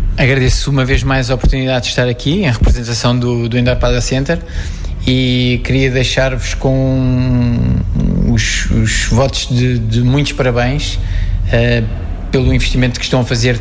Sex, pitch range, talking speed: male, 110-125 Hz, 150 wpm